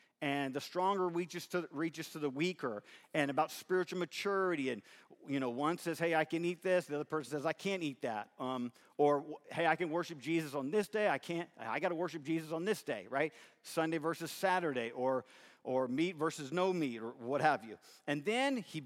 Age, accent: 50-69, American